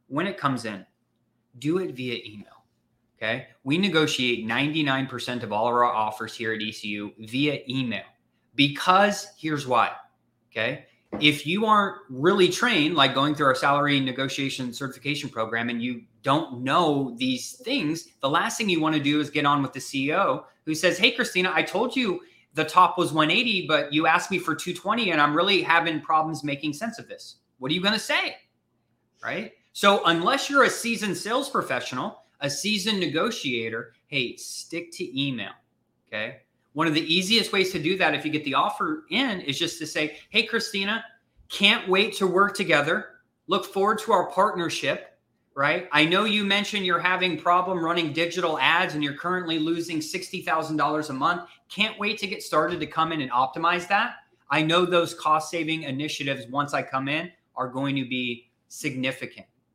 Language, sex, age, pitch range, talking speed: English, male, 20-39, 135-185 Hz, 180 wpm